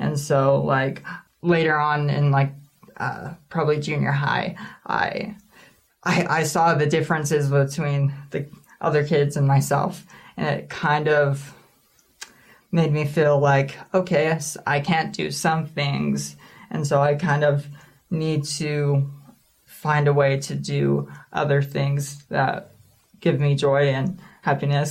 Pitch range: 140-160 Hz